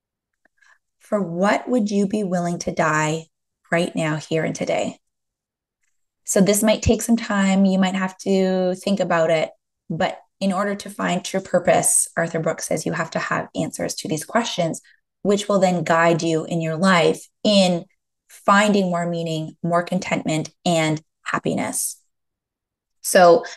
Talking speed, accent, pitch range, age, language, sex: 155 wpm, American, 170-200 Hz, 20-39, English, female